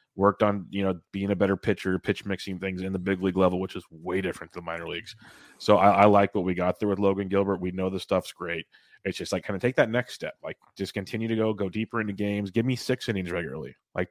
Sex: male